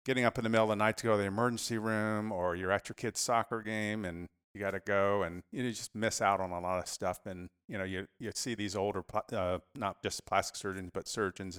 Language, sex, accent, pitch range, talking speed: English, male, American, 90-105 Hz, 265 wpm